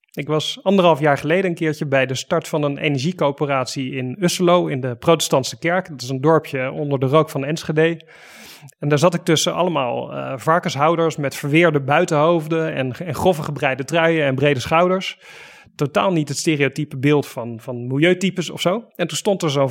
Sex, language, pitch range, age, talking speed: male, Dutch, 140-175 Hz, 30-49, 185 wpm